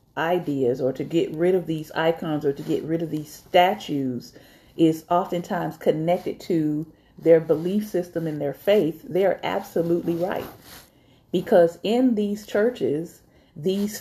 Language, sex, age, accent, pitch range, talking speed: English, female, 40-59, American, 155-205 Hz, 145 wpm